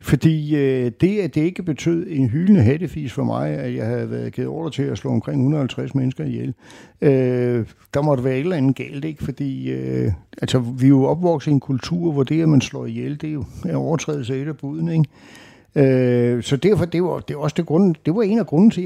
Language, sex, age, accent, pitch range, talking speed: Danish, male, 60-79, native, 130-165 Hz, 205 wpm